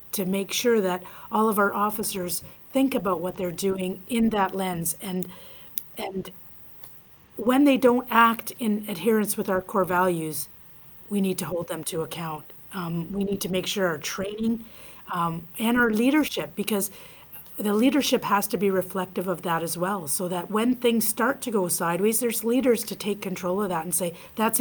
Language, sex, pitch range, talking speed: English, female, 180-225 Hz, 185 wpm